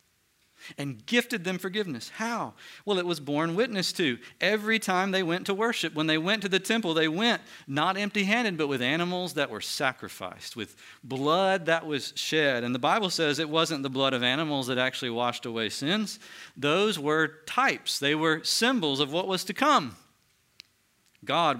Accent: American